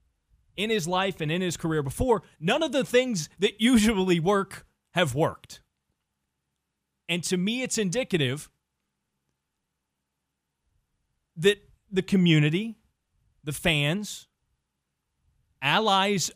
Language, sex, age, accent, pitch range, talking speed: English, male, 30-49, American, 125-195 Hz, 105 wpm